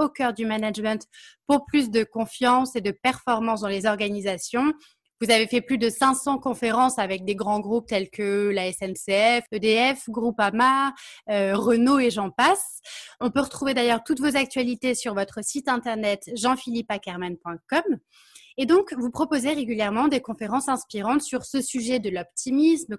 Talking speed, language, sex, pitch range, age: 160 wpm, French, female, 220-270 Hz, 20-39